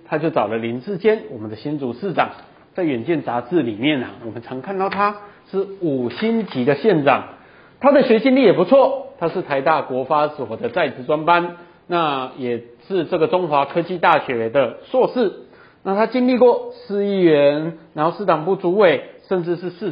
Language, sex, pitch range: Chinese, male, 155-230 Hz